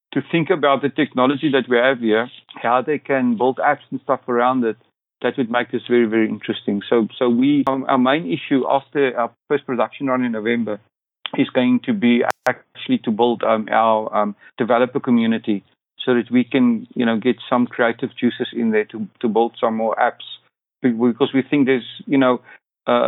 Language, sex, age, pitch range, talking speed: English, male, 50-69, 115-135 Hz, 200 wpm